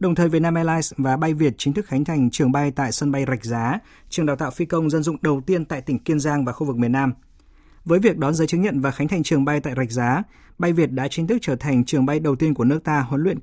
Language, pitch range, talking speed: Vietnamese, 125-160 Hz, 295 wpm